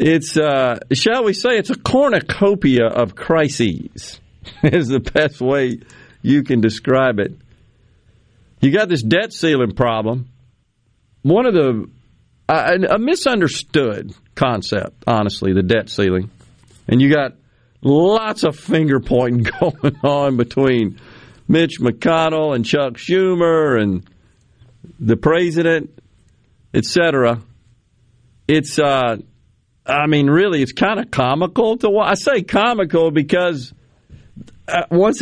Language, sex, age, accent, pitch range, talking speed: English, male, 50-69, American, 115-155 Hz, 120 wpm